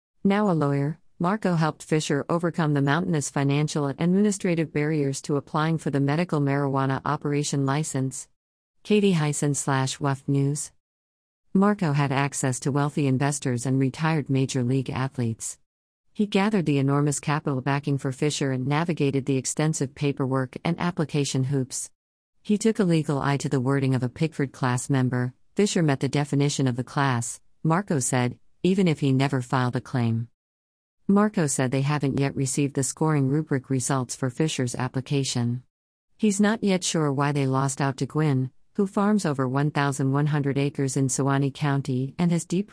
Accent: American